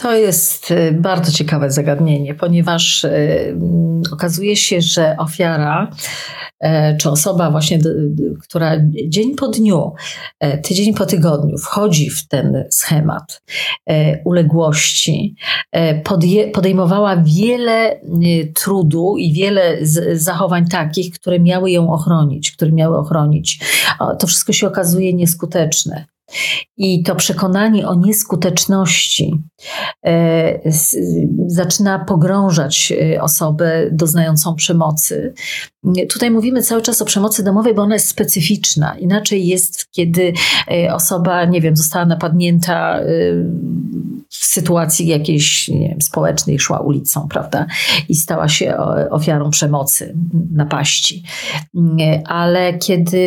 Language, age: Polish, 40-59